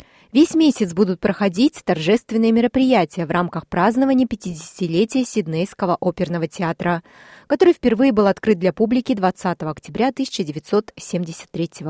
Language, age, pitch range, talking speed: Russian, 20-39, 180-245 Hz, 110 wpm